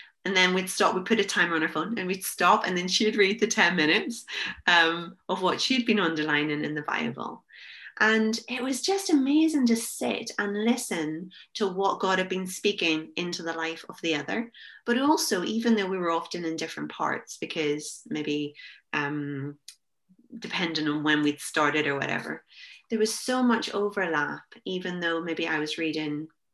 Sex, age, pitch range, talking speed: female, 30-49, 155-220 Hz, 185 wpm